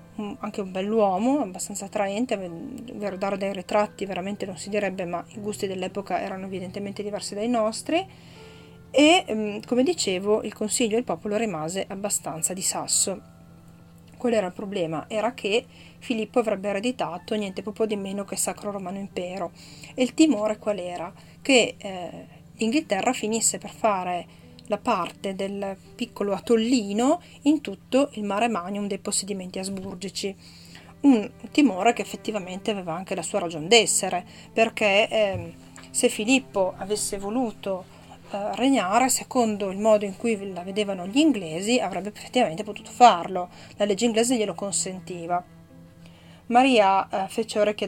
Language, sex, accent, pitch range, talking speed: Italian, female, native, 190-230 Hz, 145 wpm